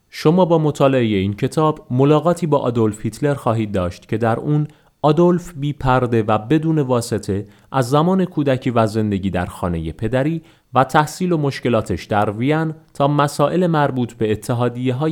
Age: 30-49